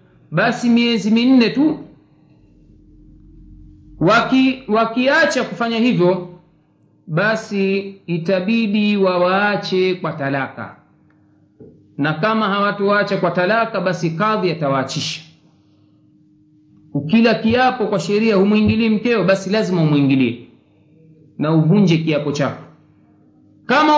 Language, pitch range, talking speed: Swahili, 165-245 Hz, 90 wpm